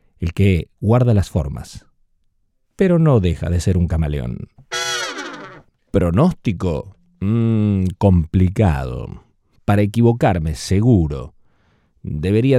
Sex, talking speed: male, 90 wpm